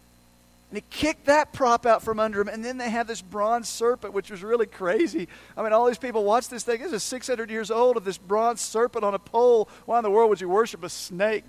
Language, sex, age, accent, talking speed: English, male, 40-59, American, 255 wpm